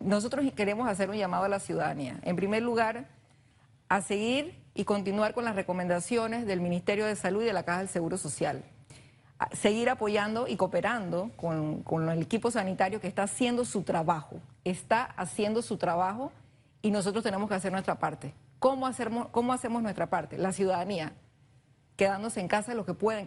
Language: Spanish